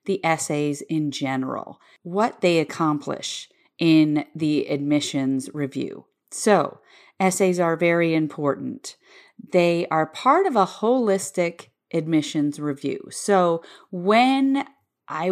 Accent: American